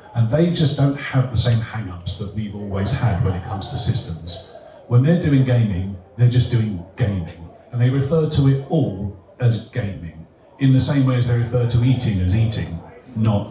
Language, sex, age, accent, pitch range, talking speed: English, male, 40-59, British, 105-135 Hz, 200 wpm